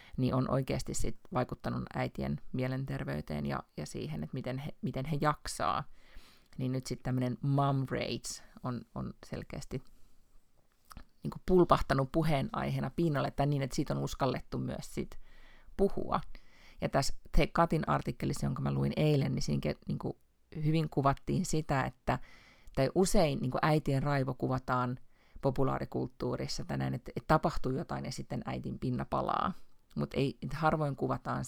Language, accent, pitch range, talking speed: Finnish, native, 120-150 Hz, 145 wpm